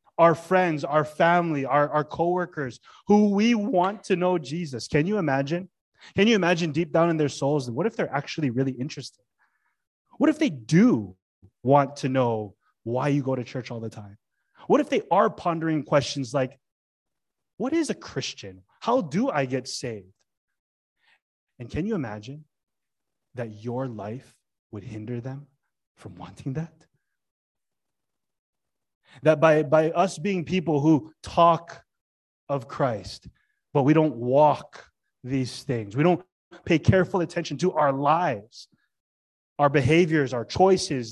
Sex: male